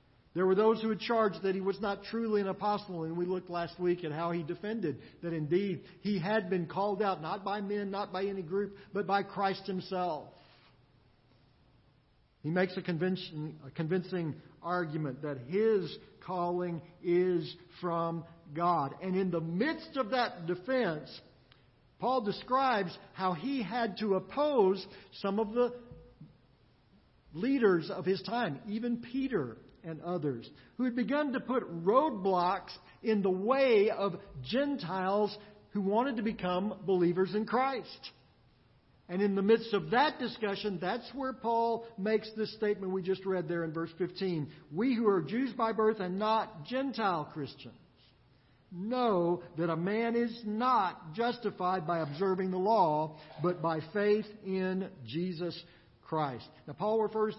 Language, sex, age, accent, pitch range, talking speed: English, male, 50-69, American, 170-215 Hz, 155 wpm